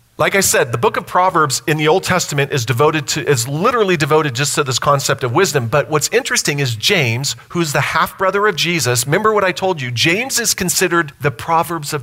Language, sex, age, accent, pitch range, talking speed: English, male, 40-59, American, 140-185 Hz, 220 wpm